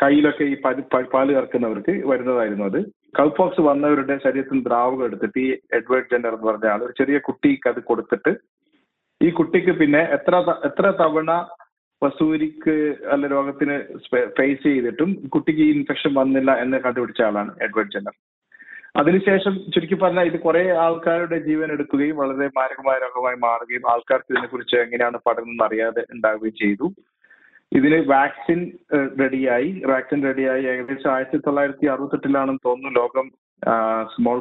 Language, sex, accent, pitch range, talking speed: Malayalam, male, native, 130-160 Hz, 125 wpm